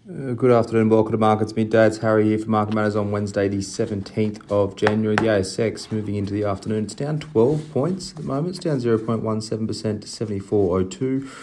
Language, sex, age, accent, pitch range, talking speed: English, male, 30-49, Australian, 85-110 Hz, 190 wpm